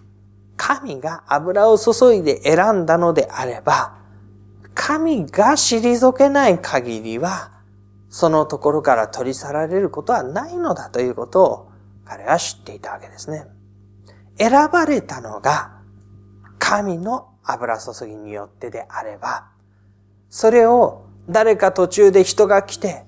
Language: Japanese